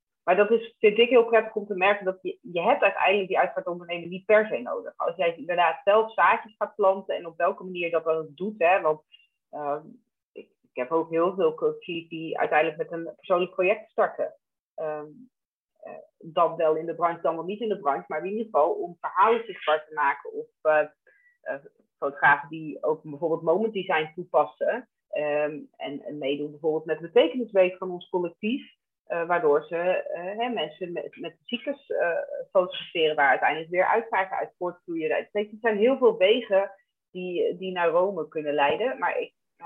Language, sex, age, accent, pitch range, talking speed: Dutch, female, 30-49, Dutch, 165-220 Hz, 190 wpm